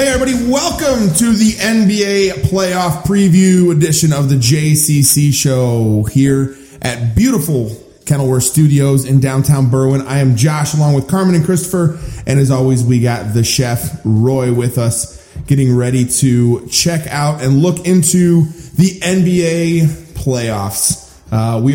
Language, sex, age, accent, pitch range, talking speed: English, male, 20-39, American, 125-165 Hz, 145 wpm